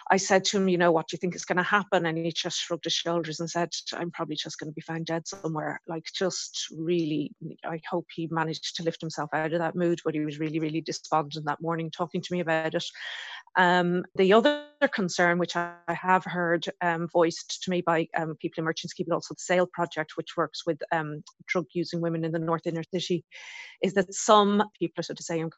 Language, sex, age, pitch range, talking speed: English, female, 30-49, 165-180 Hz, 235 wpm